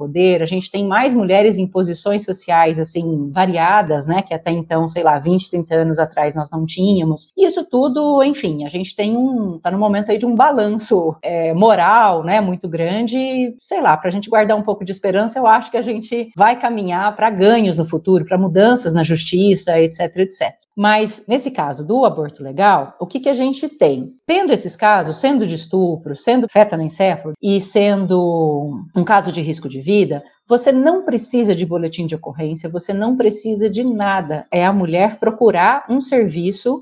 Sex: female